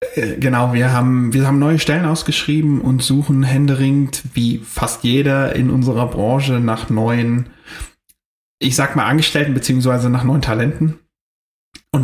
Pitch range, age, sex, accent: 125-150 Hz, 30-49, male, German